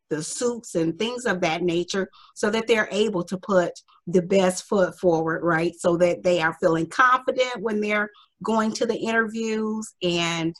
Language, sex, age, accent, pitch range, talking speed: English, female, 30-49, American, 175-245 Hz, 175 wpm